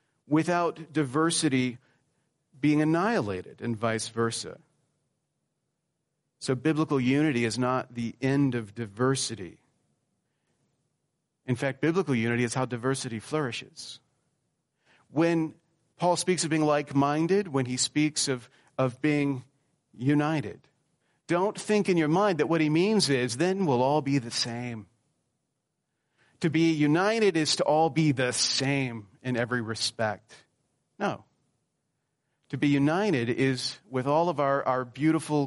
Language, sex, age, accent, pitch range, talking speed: English, male, 40-59, American, 125-155 Hz, 130 wpm